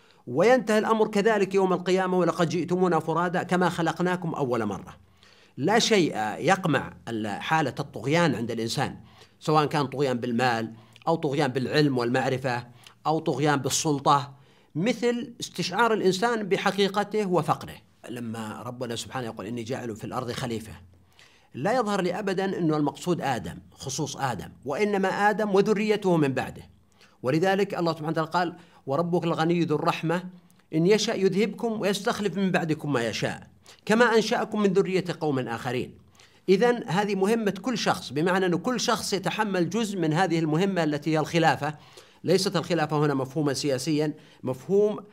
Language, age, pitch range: Arabic, 50-69, 135-190 Hz